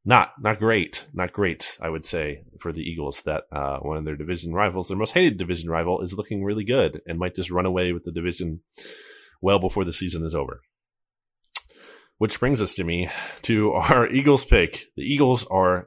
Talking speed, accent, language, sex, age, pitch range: 200 wpm, American, English, male, 30-49, 85-110 Hz